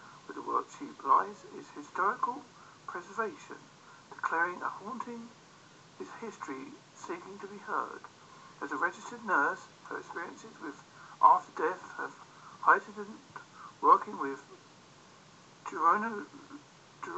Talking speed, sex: 110 wpm, male